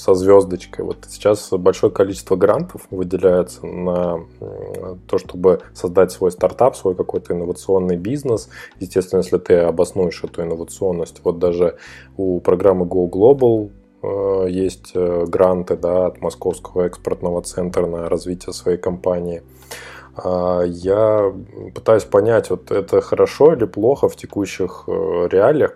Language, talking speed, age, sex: Russian, 120 wpm, 20-39, male